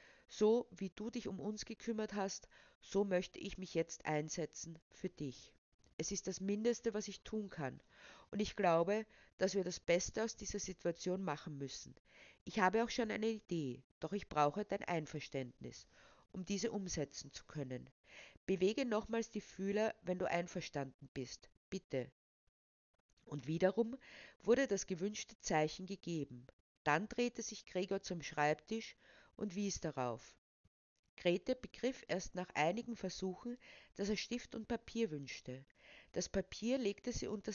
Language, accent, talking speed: German, Austrian, 150 wpm